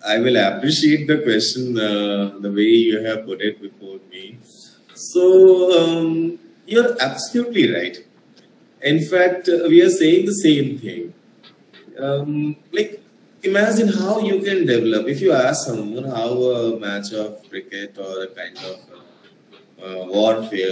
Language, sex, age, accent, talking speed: Hindi, male, 20-39, native, 150 wpm